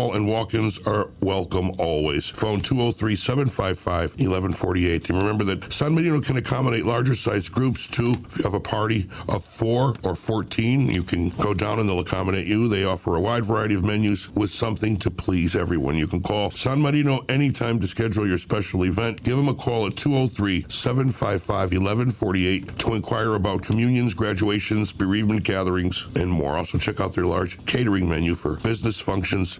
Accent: American